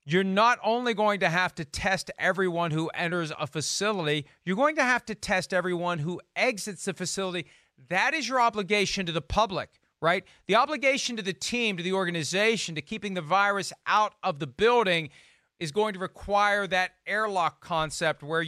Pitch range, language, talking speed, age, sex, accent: 170-215 Hz, English, 180 wpm, 40-59, male, American